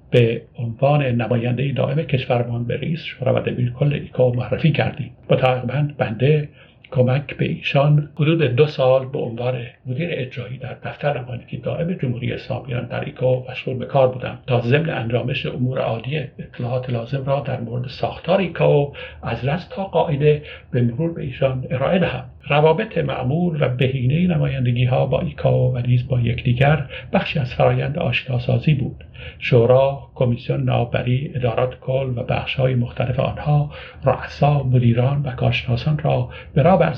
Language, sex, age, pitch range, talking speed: English, male, 60-79, 125-150 Hz, 150 wpm